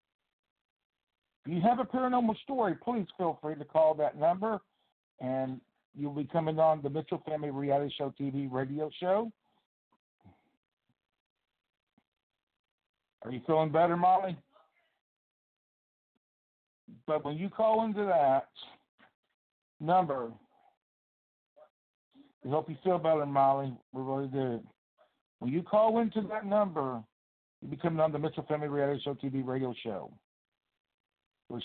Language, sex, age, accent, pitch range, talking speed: English, male, 60-79, American, 135-165 Hz, 125 wpm